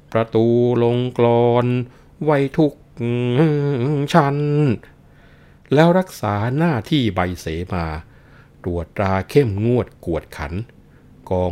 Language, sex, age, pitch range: Thai, male, 60-79, 85-115 Hz